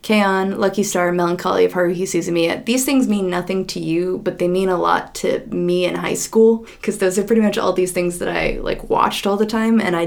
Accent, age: American, 20-39